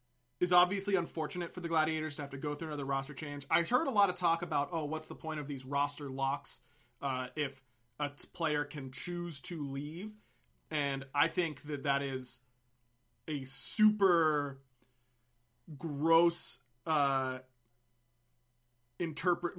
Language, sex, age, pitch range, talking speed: English, male, 20-39, 130-160 Hz, 145 wpm